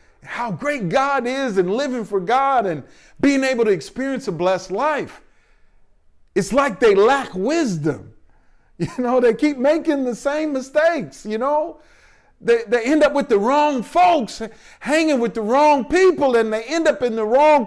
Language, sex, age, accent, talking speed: English, male, 50-69, American, 175 wpm